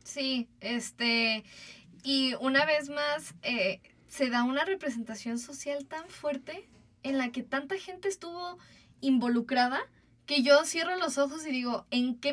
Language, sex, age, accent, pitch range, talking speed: Spanish, female, 10-29, Mexican, 235-285 Hz, 145 wpm